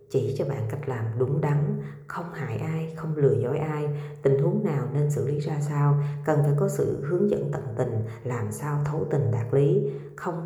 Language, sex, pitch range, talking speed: Vietnamese, female, 135-155 Hz, 210 wpm